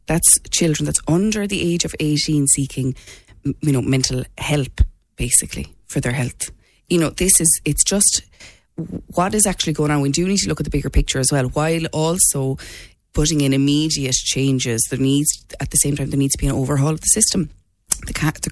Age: 20-39